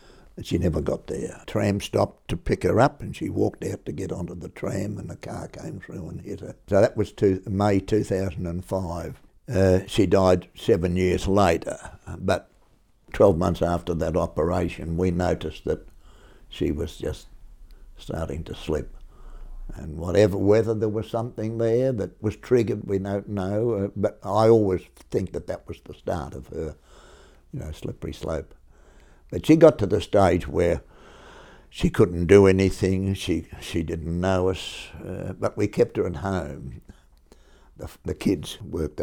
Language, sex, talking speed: English, male, 170 wpm